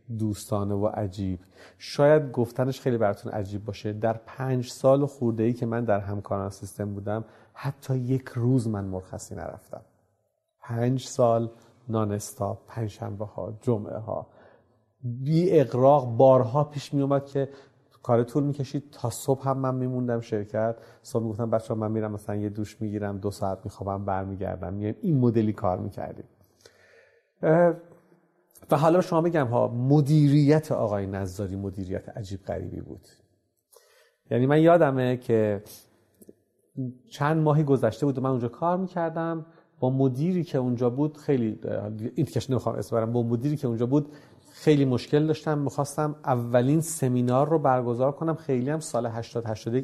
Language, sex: Persian, male